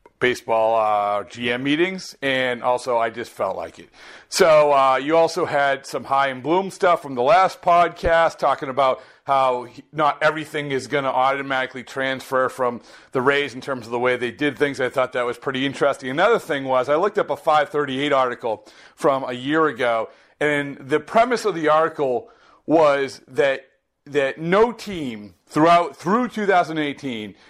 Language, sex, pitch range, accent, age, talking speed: English, male, 135-170 Hz, American, 40-59, 170 wpm